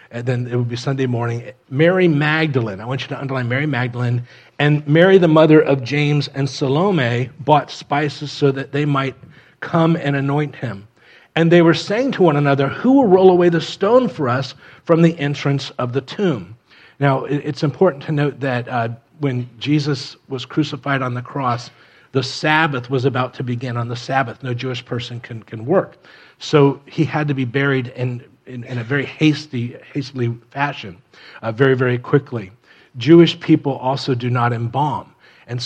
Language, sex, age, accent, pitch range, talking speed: English, male, 40-59, American, 120-150 Hz, 185 wpm